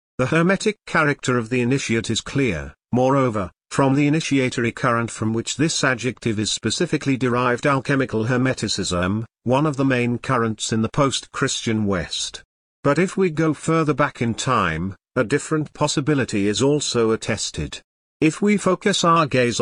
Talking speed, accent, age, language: 155 wpm, British, 50-69, English